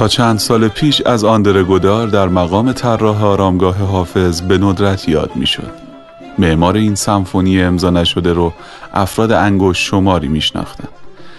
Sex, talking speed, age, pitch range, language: male, 135 wpm, 30-49, 90-105 Hz, Persian